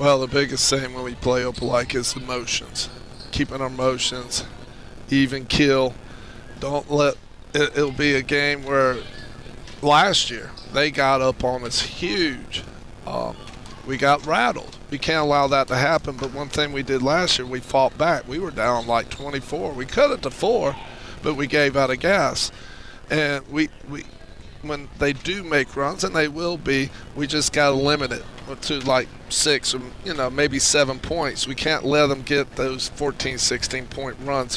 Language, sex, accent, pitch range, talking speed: English, male, American, 125-145 Hz, 185 wpm